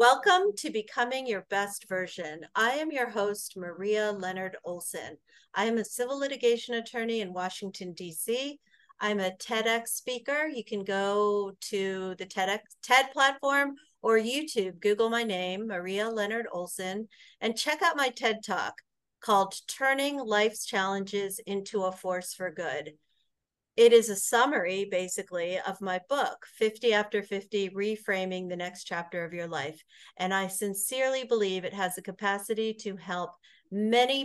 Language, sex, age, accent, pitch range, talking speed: English, female, 50-69, American, 185-235 Hz, 150 wpm